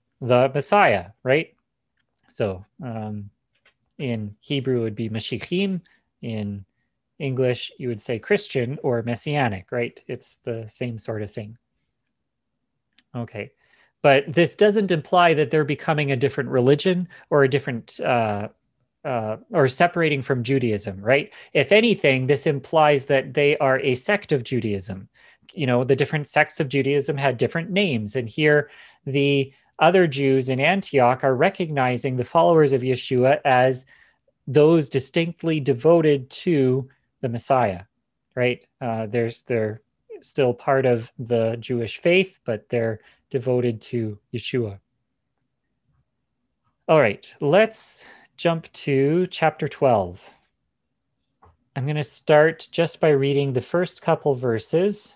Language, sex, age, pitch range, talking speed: English, male, 30-49, 120-150 Hz, 130 wpm